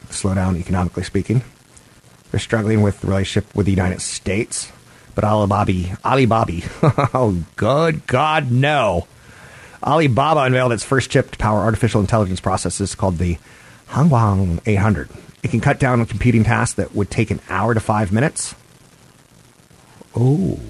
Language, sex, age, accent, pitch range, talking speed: English, male, 30-49, American, 95-120 Hz, 145 wpm